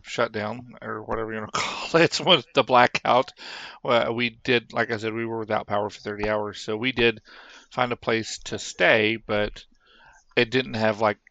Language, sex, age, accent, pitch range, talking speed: English, male, 40-59, American, 105-115 Hz, 195 wpm